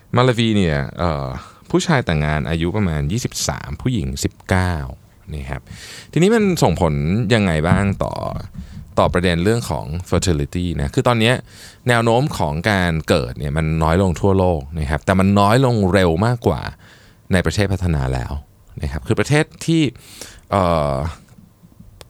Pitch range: 80-110 Hz